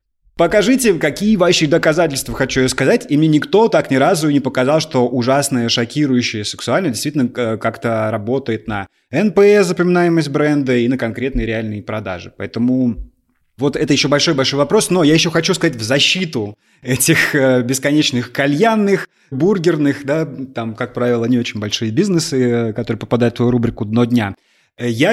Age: 30-49